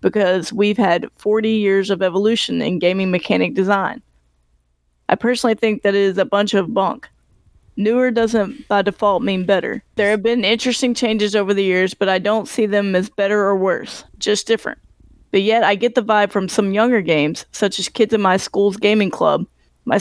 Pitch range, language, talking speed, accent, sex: 190-220 Hz, English, 195 wpm, American, female